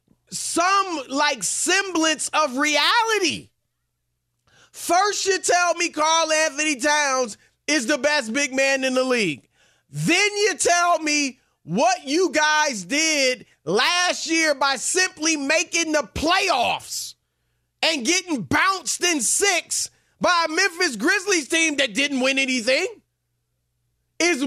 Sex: male